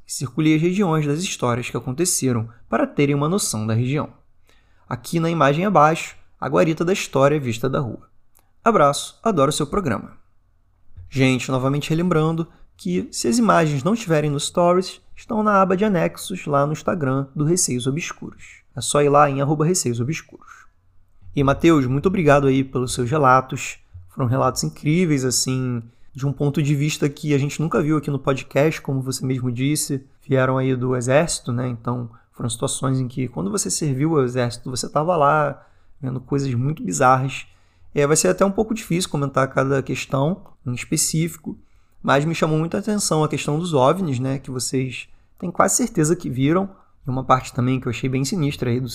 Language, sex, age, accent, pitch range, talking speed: Portuguese, male, 20-39, Brazilian, 125-160 Hz, 180 wpm